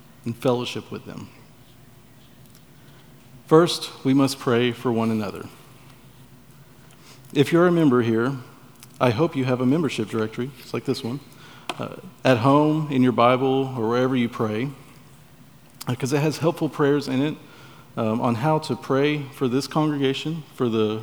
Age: 50-69